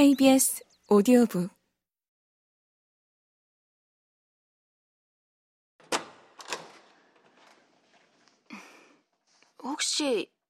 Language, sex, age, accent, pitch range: Korean, female, 20-39, native, 200-285 Hz